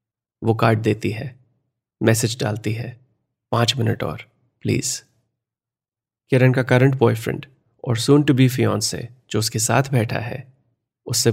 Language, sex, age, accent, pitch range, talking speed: Hindi, male, 30-49, native, 115-130 Hz, 145 wpm